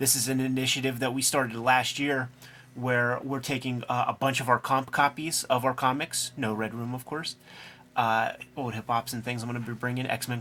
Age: 30-49